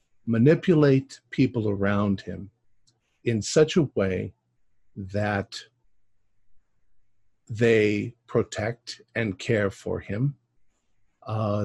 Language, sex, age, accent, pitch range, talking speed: English, male, 50-69, American, 100-120 Hz, 80 wpm